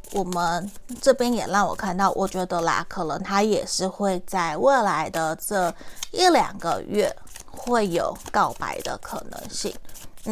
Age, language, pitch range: 30-49, Chinese, 185-245 Hz